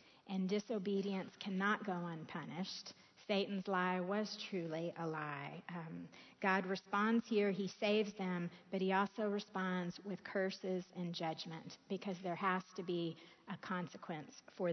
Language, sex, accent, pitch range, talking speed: English, female, American, 175-205 Hz, 140 wpm